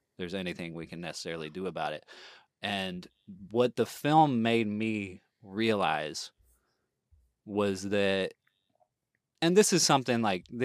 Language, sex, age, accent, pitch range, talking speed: English, male, 20-39, American, 95-120 Hz, 125 wpm